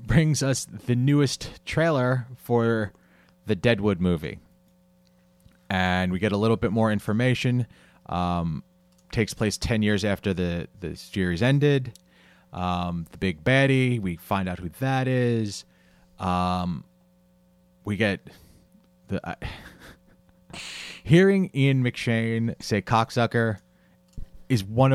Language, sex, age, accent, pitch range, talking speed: English, male, 30-49, American, 90-115 Hz, 115 wpm